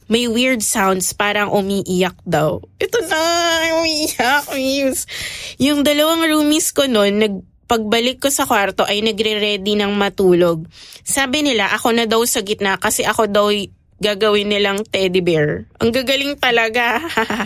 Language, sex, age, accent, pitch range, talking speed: English, female, 20-39, Filipino, 195-260 Hz, 140 wpm